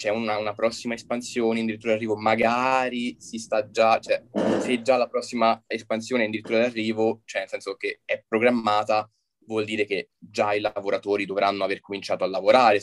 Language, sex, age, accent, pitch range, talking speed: Italian, male, 20-39, native, 100-115 Hz, 185 wpm